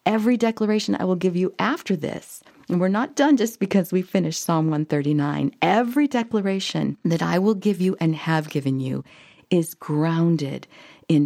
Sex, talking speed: female, 170 wpm